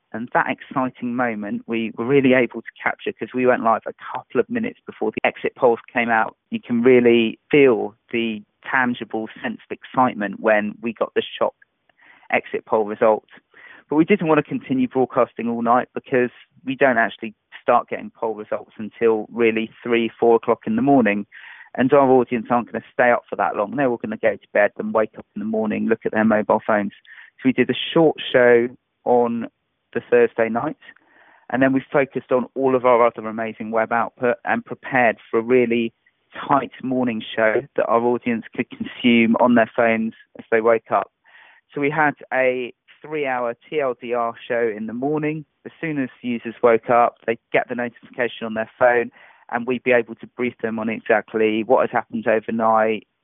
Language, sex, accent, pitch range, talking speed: English, male, British, 115-130 Hz, 195 wpm